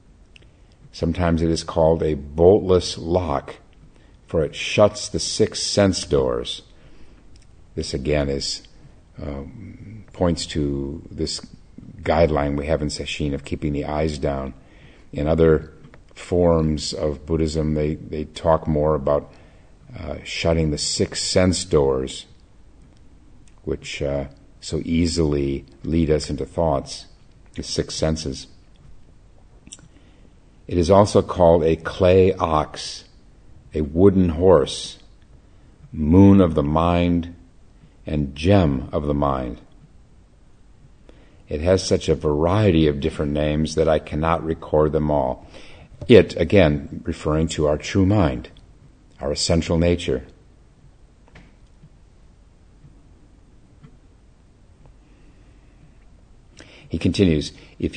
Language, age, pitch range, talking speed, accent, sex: English, 50-69, 75-90 Hz, 110 wpm, American, male